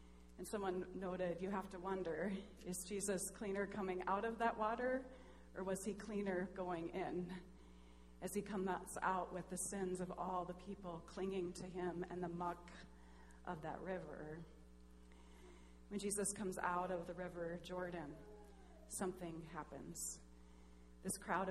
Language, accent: English, American